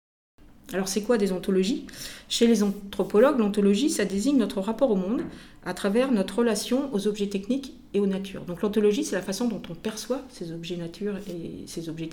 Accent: French